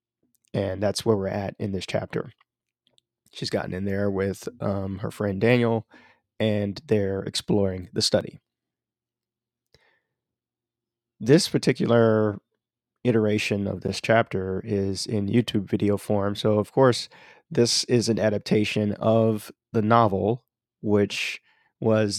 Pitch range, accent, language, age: 100-115 Hz, American, English, 30-49